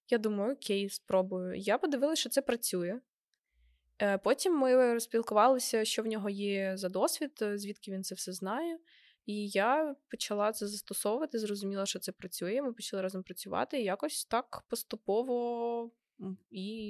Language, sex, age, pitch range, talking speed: Ukrainian, female, 20-39, 185-230 Hz, 145 wpm